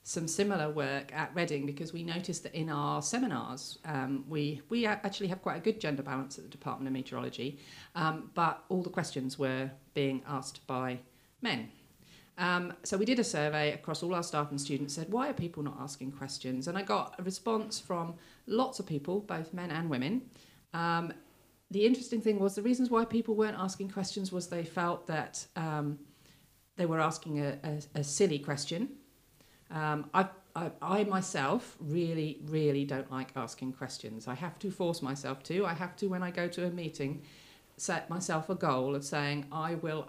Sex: female